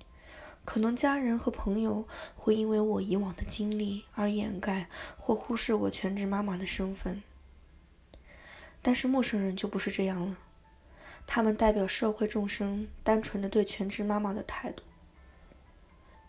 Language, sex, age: Chinese, female, 20-39